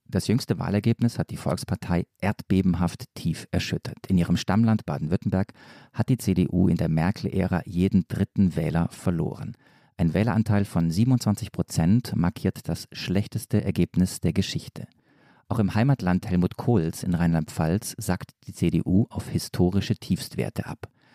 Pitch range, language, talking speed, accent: 90-115 Hz, German, 135 wpm, German